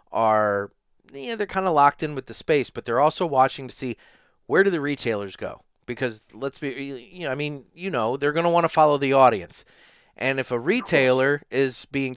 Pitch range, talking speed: 130-165 Hz, 220 wpm